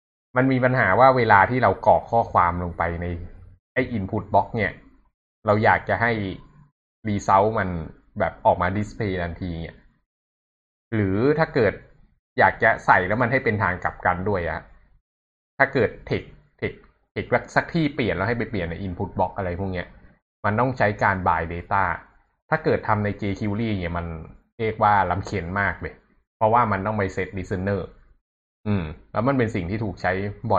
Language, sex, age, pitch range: Thai, male, 20-39, 90-110 Hz